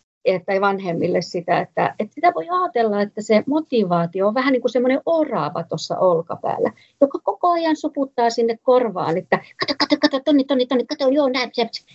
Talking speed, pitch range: 175 wpm, 195-270 Hz